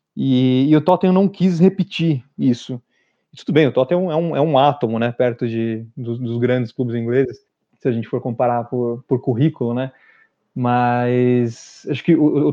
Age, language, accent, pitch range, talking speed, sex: 20-39, Portuguese, Brazilian, 125-155 Hz, 185 wpm, male